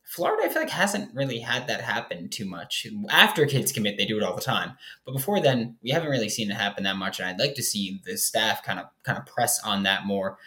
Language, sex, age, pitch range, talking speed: English, male, 20-39, 100-140 Hz, 265 wpm